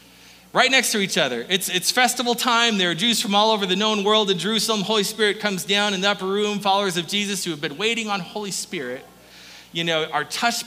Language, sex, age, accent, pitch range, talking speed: English, male, 30-49, American, 155-230 Hz, 235 wpm